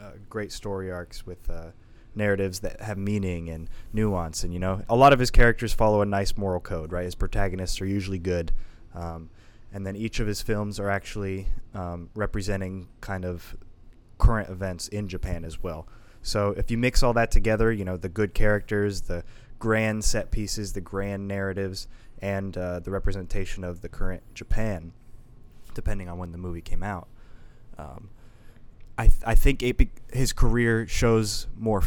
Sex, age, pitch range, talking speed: male, 20-39, 90-115 Hz, 175 wpm